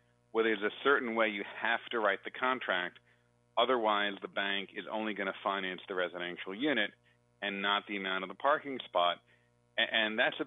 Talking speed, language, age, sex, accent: 195 wpm, English, 40-59, male, American